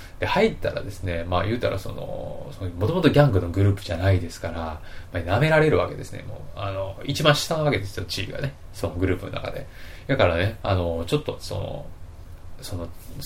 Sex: male